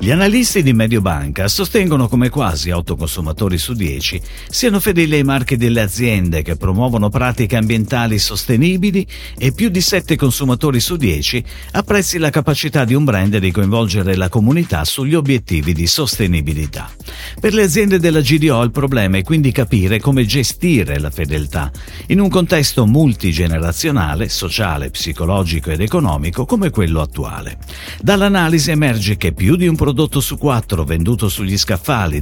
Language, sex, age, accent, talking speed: Italian, male, 50-69, native, 150 wpm